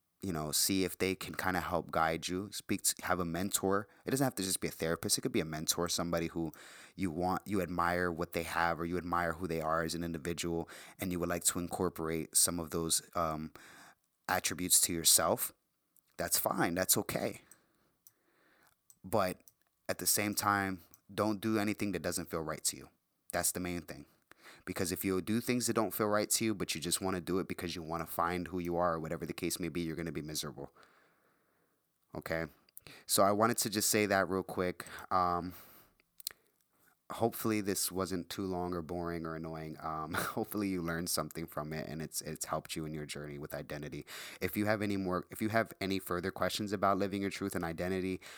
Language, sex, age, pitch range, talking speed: English, male, 20-39, 85-95 Hz, 215 wpm